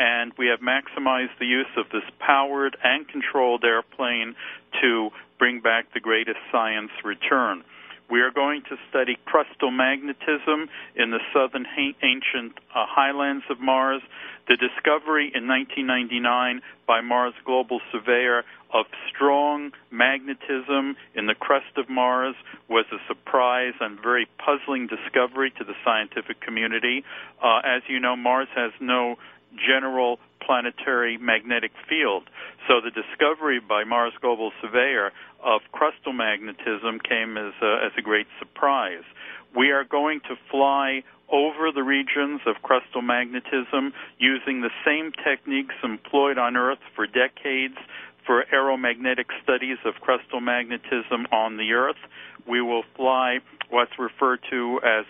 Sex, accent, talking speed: male, American, 135 wpm